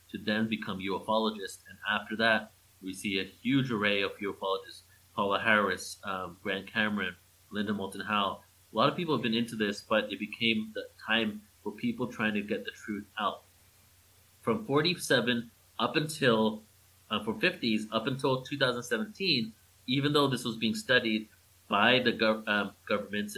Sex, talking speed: male, 165 wpm